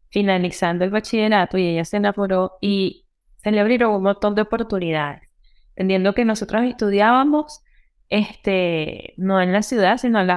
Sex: female